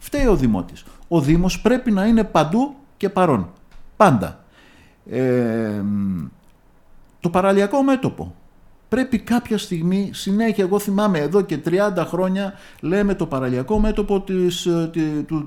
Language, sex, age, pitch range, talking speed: Greek, male, 60-79, 130-200 Hz, 125 wpm